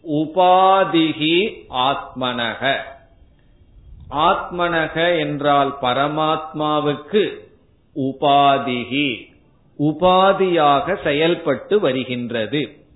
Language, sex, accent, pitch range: Tamil, male, native, 135-170 Hz